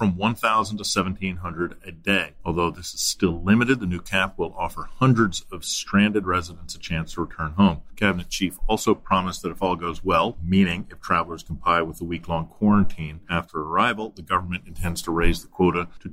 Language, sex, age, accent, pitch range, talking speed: English, male, 40-59, American, 90-105 Hz, 195 wpm